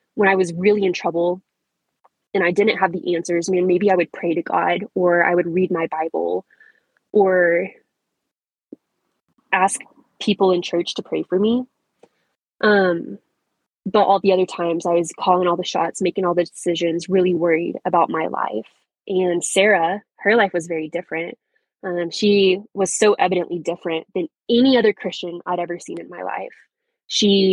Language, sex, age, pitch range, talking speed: English, female, 20-39, 170-200 Hz, 175 wpm